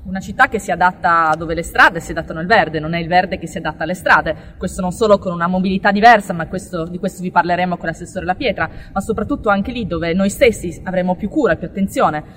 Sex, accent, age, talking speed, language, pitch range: female, native, 20-39, 240 wpm, Italian, 175-215 Hz